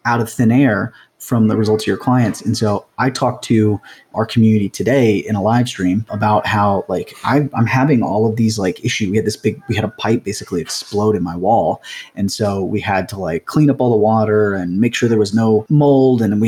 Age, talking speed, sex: 30-49, 240 wpm, male